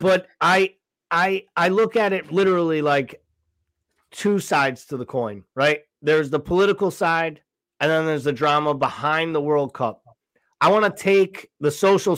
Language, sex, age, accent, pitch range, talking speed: English, male, 30-49, American, 140-170 Hz, 170 wpm